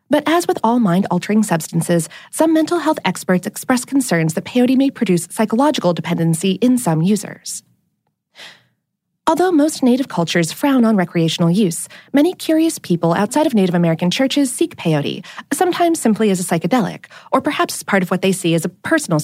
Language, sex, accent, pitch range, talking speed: English, female, American, 175-270 Hz, 170 wpm